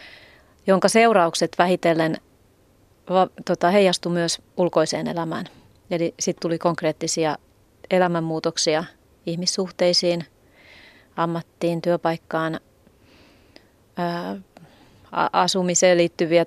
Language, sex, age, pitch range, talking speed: Finnish, female, 30-49, 165-190 Hz, 60 wpm